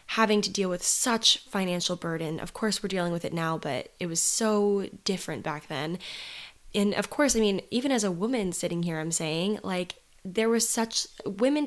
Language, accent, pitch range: English, American, 170-205 Hz